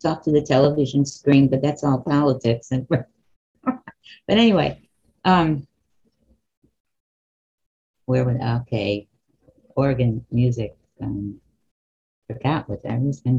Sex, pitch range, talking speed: female, 130-170 Hz, 110 wpm